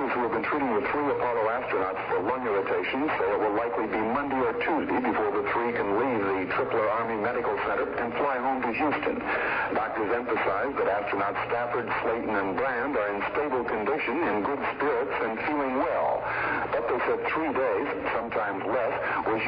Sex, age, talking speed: male, 60-79, 190 wpm